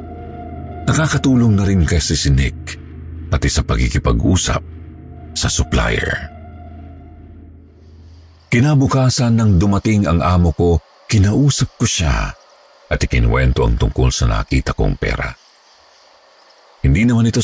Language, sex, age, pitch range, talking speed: Filipino, male, 50-69, 75-100 Hz, 105 wpm